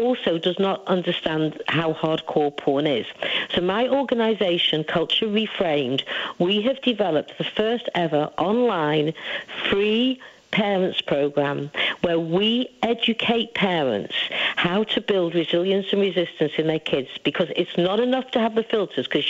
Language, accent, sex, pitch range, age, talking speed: English, British, female, 165-230 Hz, 50-69, 140 wpm